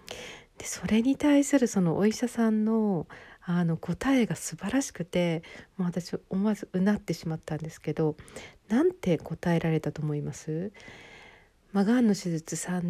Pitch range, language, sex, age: 155-205 Hz, Japanese, female, 50-69